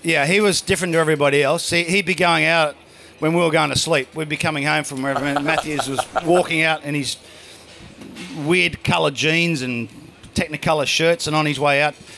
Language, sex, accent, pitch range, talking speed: English, male, Australian, 150-180 Hz, 195 wpm